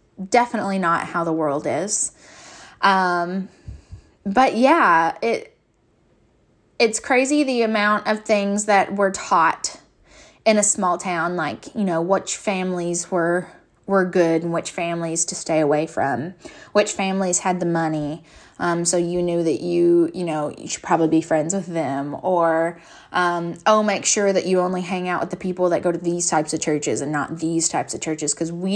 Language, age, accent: English, 10-29, American